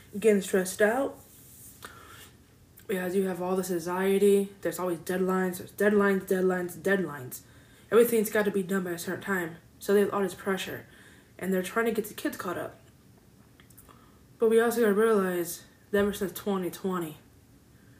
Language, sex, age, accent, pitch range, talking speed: English, female, 20-39, American, 180-215 Hz, 160 wpm